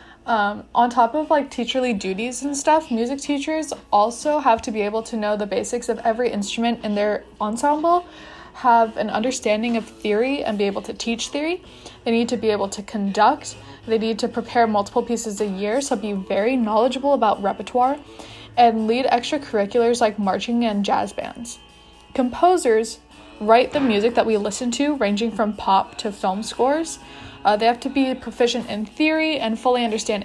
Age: 20-39